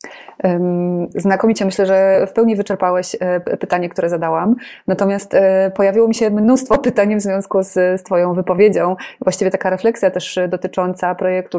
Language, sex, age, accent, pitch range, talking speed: Polish, female, 20-39, native, 180-195 Hz, 140 wpm